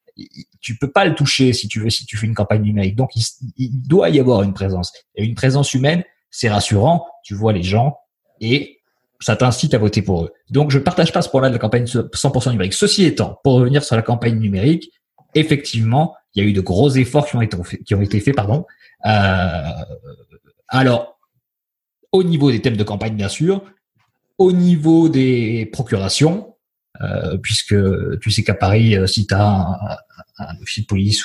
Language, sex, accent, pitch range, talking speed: French, male, French, 105-145 Hz, 200 wpm